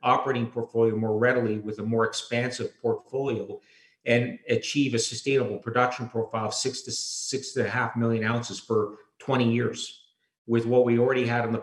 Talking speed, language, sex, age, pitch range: 175 wpm, English, male, 50-69, 110-125 Hz